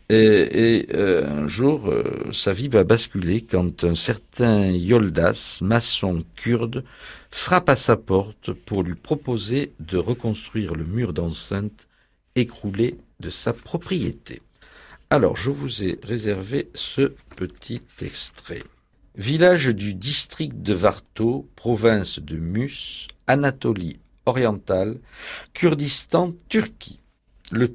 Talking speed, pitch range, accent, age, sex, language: 115 wpm, 90-120 Hz, French, 60-79, male, French